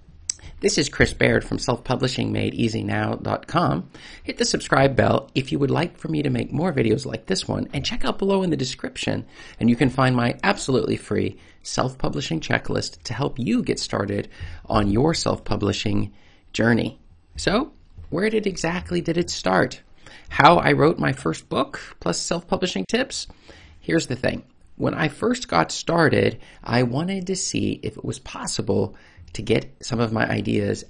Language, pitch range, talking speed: English, 100-135 Hz, 165 wpm